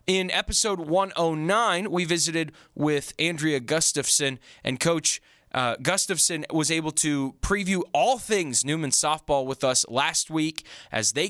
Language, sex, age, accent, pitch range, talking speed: English, male, 20-39, American, 115-160 Hz, 140 wpm